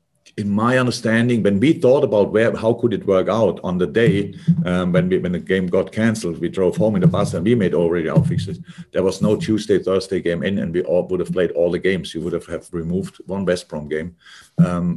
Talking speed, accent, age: 245 wpm, German, 50-69